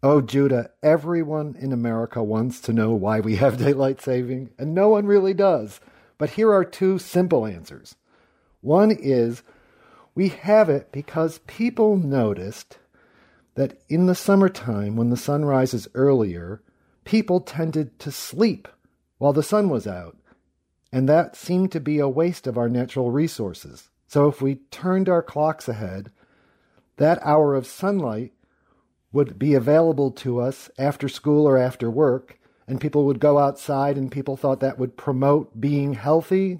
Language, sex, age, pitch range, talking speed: English, male, 50-69, 125-165 Hz, 155 wpm